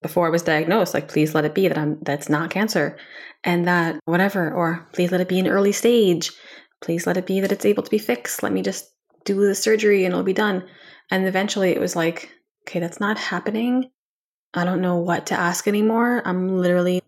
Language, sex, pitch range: English, female, 180-210 Hz